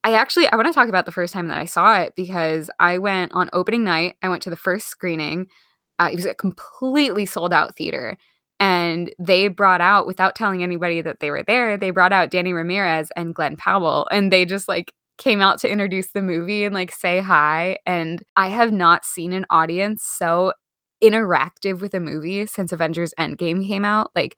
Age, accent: 20-39, American